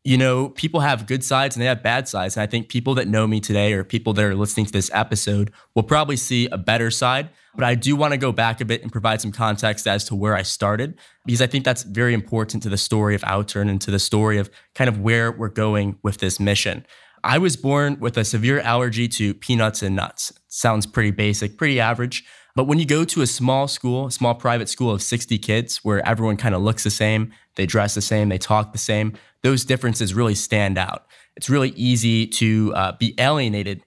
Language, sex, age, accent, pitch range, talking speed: English, male, 20-39, American, 105-125 Hz, 235 wpm